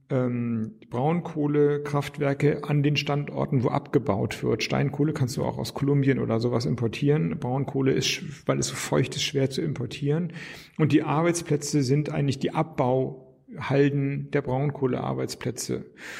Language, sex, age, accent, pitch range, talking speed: German, male, 40-59, German, 130-155 Hz, 130 wpm